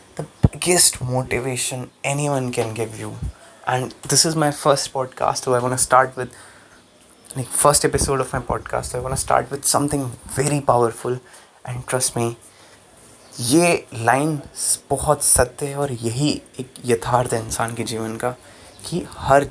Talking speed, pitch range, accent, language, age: 150 wpm, 120-140 Hz, native, Hindi, 20-39